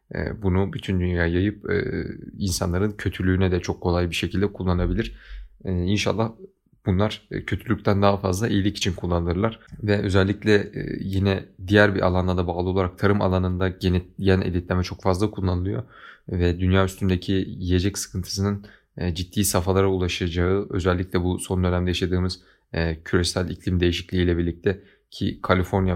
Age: 30-49